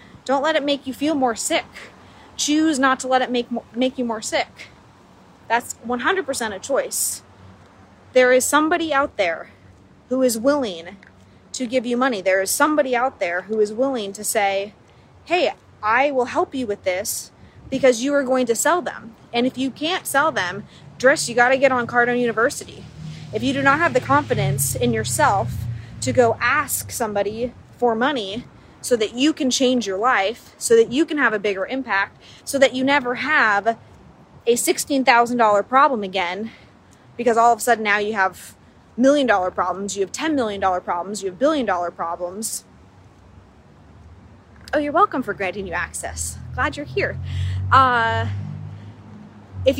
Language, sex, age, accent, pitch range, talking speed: English, female, 20-39, American, 195-275 Hz, 170 wpm